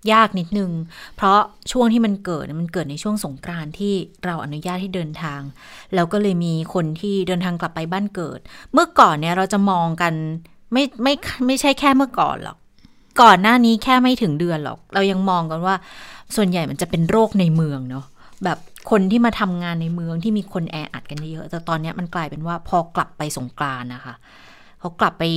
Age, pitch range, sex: 20-39, 160-195 Hz, female